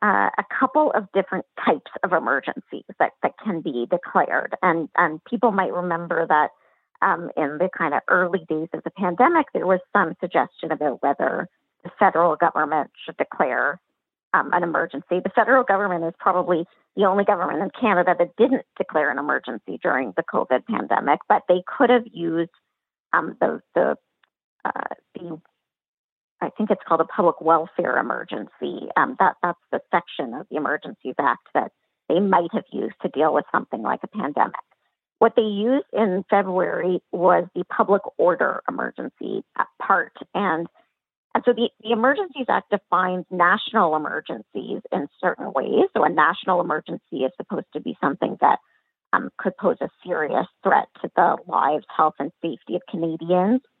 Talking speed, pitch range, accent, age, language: 165 wpm, 170-225 Hz, American, 40-59, English